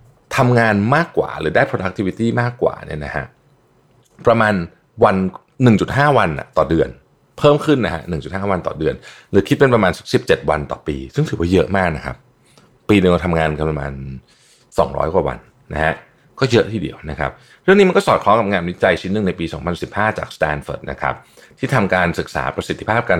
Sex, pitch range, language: male, 75-120 Hz, Thai